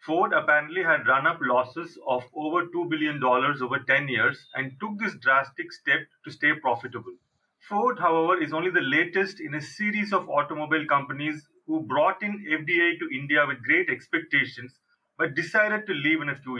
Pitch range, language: 145-200 Hz, English